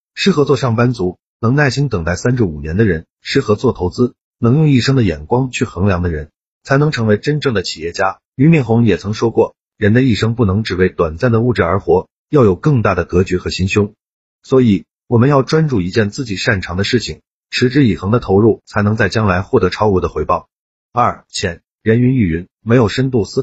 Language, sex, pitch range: Chinese, male, 95-130 Hz